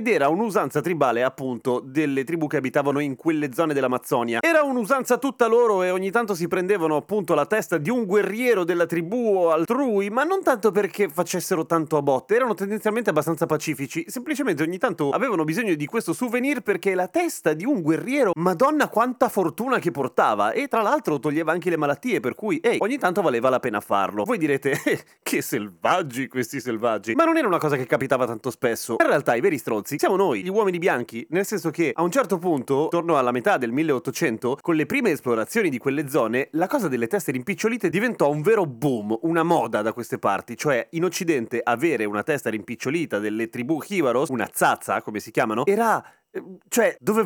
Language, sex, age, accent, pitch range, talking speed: Italian, male, 30-49, native, 140-220 Hz, 200 wpm